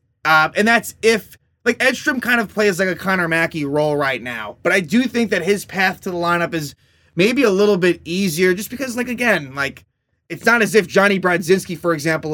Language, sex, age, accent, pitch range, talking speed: English, male, 20-39, American, 150-205 Hz, 220 wpm